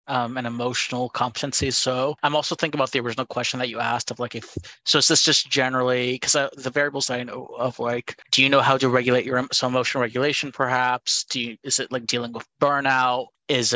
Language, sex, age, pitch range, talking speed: English, male, 30-49, 120-135 Hz, 220 wpm